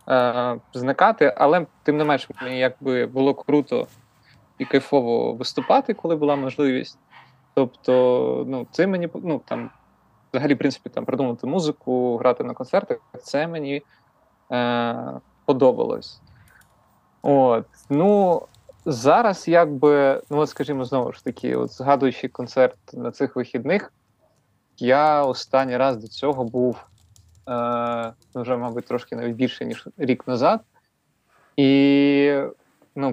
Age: 20-39